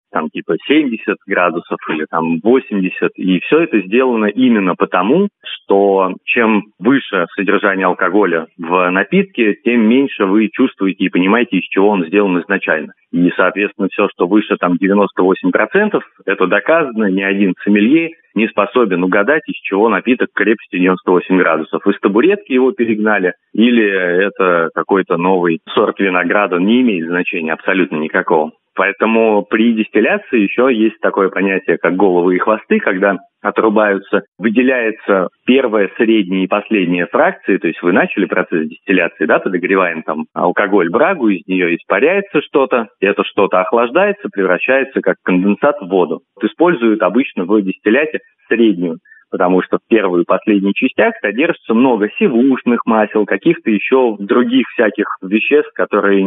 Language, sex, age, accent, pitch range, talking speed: Russian, male, 30-49, native, 90-120 Hz, 140 wpm